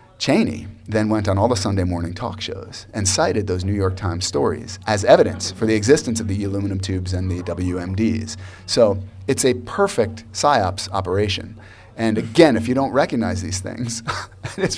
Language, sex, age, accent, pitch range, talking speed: English, male, 30-49, American, 95-125 Hz, 180 wpm